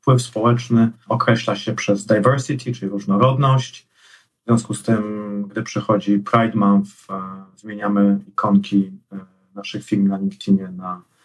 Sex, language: male, Polish